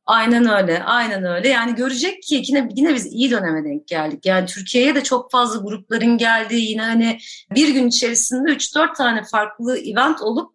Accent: native